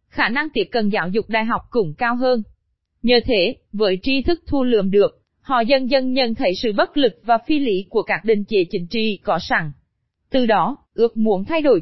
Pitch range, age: 205-260 Hz, 20-39